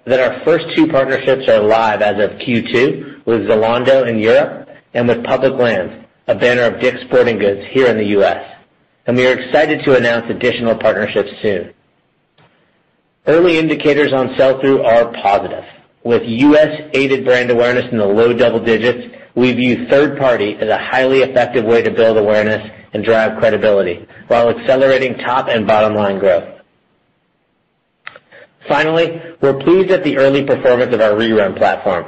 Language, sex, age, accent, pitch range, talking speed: English, male, 40-59, American, 110-140 Hz, 155 wpm